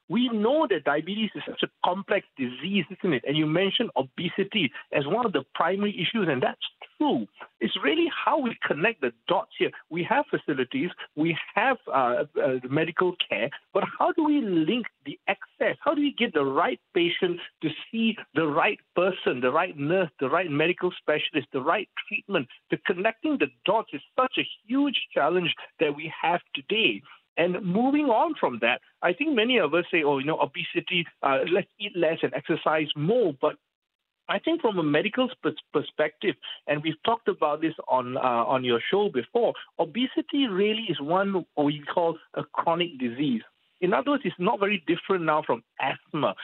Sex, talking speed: male, 185 wpm